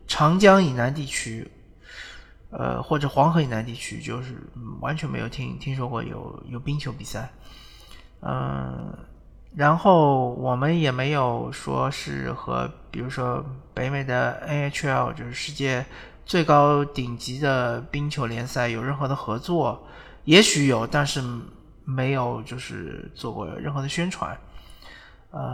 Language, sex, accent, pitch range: Chinese, male, native, 120-150 Hz